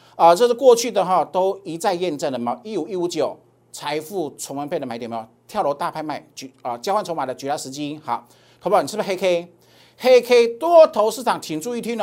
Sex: male